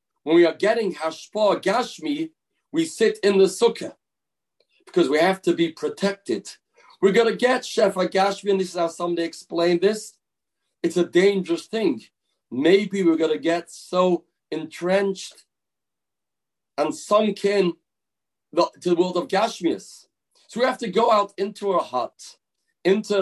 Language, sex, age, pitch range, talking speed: English, male, 40-59, 165-215 Hz, 150 wpm